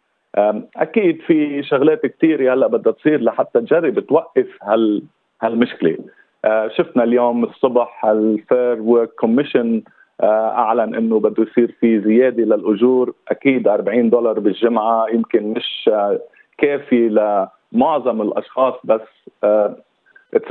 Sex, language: male, Arabic